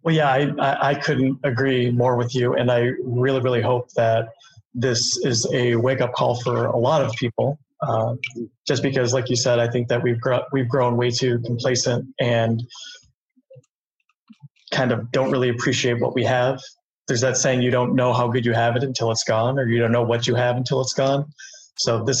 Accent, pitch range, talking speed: American, 120-135 Hz, 205 wpm